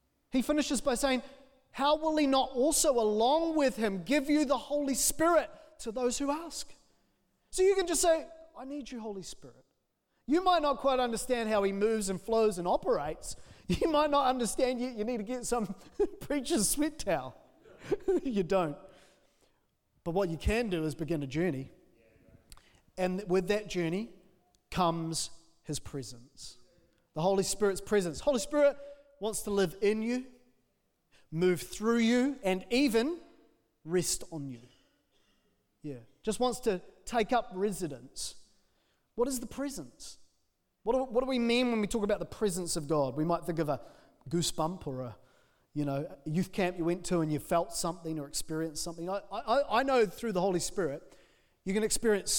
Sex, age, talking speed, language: male, 30-49, 170 wpm, English